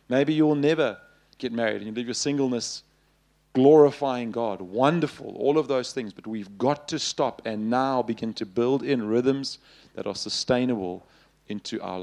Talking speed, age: 170 wpm, 40-59